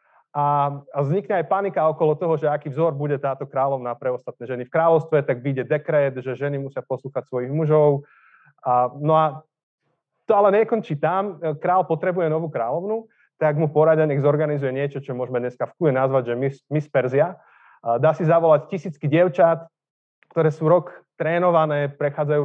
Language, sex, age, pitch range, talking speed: Slovak, male, 30-49, 140-170 Hz, 165 wpm